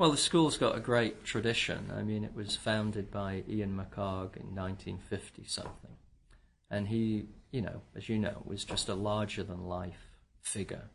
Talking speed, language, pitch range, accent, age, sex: 180 wpm, English, 95-110 Hz, British, 40-59, male